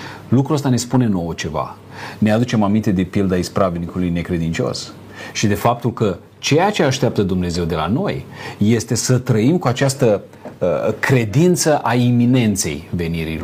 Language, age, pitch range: Romanian, 40-59, 105-135 Hz